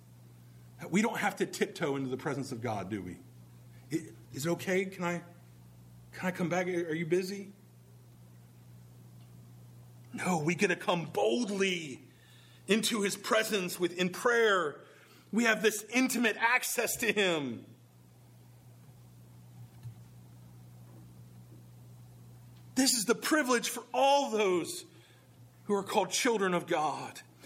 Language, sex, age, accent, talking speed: English, male, 40-59, American, 120 wpm